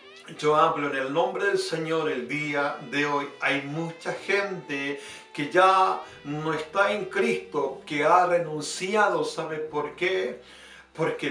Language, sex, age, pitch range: Spanish, male, 50-69, 145-185 Hz